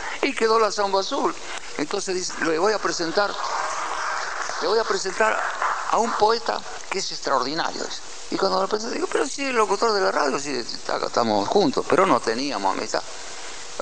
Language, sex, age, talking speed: Spanish, male, 50-69, 190 wpm